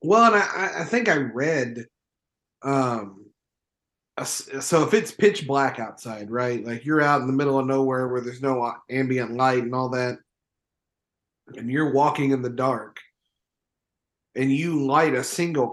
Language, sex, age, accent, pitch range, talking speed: English, male, 30-49, American, 125-150 Hz, 155 wpm